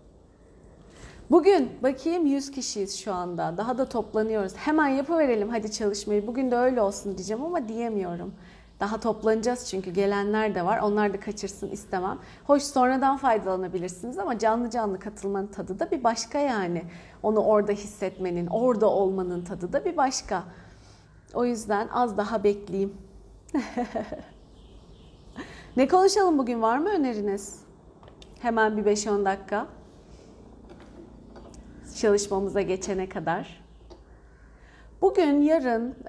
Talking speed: 120 wpm